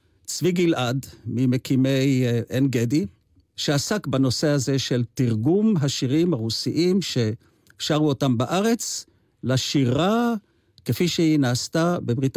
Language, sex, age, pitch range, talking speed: Hebrew, male, 50-69, 115-155 Hz, 95 wpm